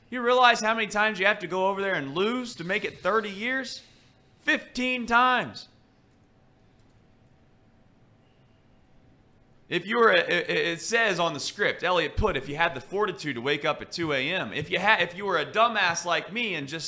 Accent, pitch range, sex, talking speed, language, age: American, 130-205 Hz, male, 195 wpm, English, 30-49